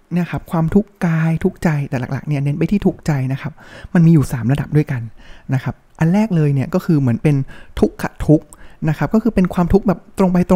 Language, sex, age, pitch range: Thai, male, 20-39, 140-180 Hz